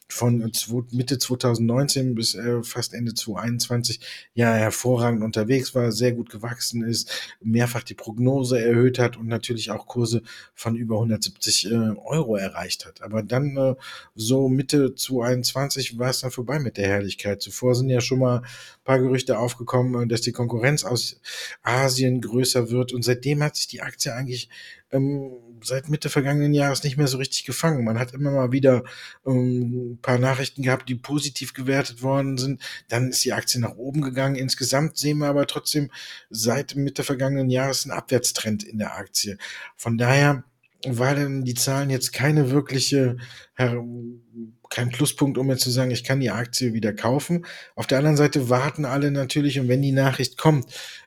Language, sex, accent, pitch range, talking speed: German, male, German, 120-135 Hz, 170 wpm